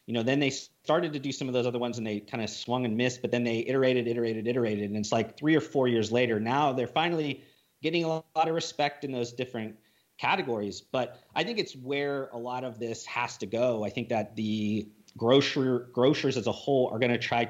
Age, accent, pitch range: 30-49, American, 110-135 Hz